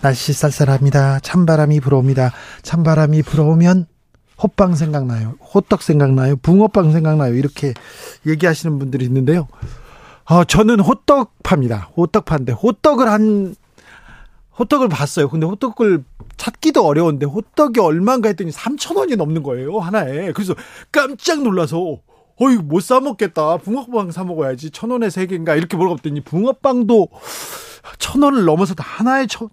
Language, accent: Korean, native